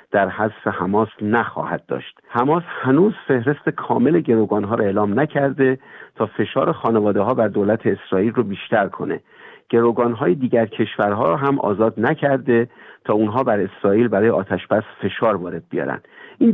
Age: 50-69